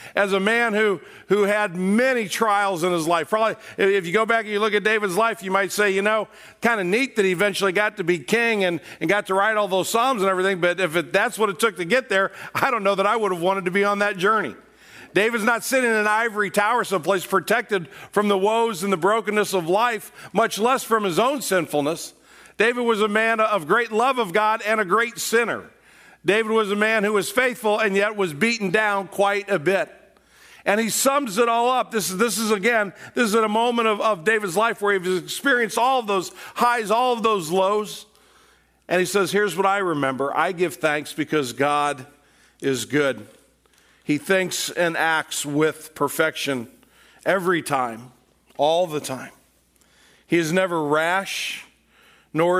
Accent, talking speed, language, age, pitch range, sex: American, 205 wpm, English, 50-69, 175-220 Hz, male